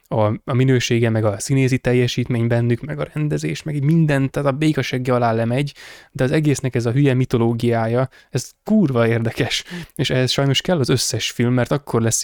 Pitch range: 120-140 Hz